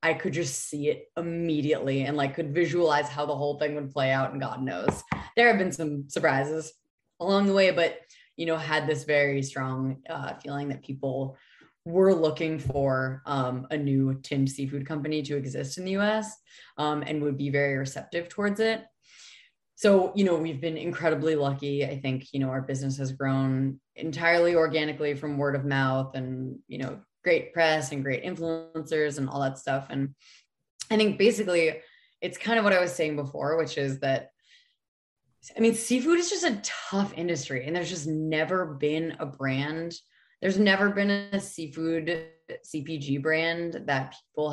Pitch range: 140-170 Hz